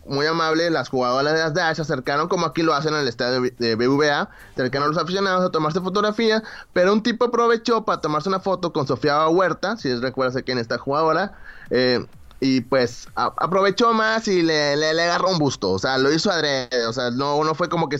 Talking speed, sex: 225 wpm, male